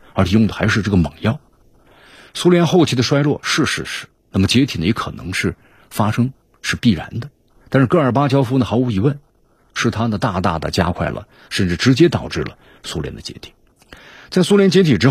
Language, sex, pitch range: Chinese, male, 95-125 Hz